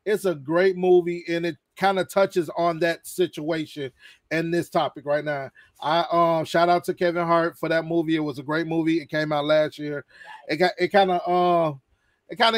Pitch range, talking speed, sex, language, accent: 155-185 Hz, 220 wpm, male, English, American